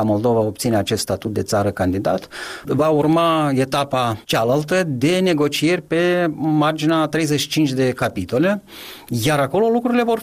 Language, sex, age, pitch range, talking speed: Romanian, male, 30-49, 120-155 Hz, 130 wpm